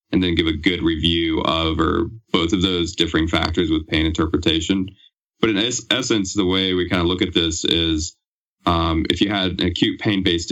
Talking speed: 200 wpm